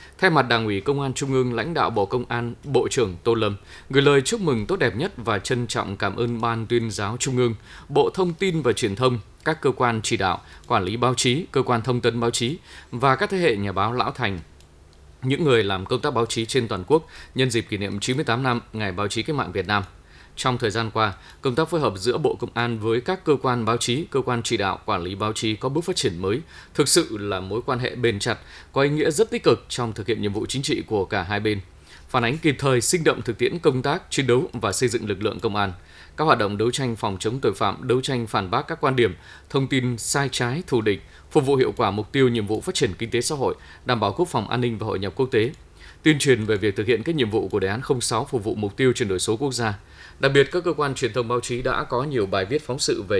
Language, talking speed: Vietnamese, 280 wpm